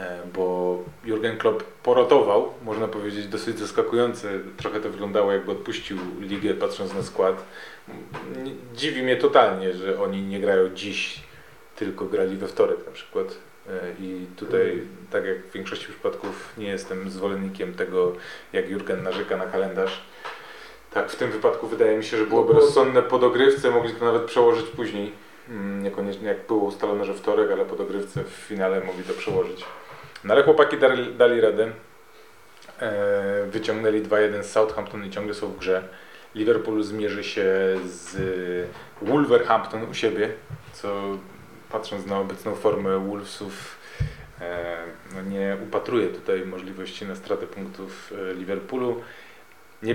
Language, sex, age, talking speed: Polish, male, 30-49, 135 wpm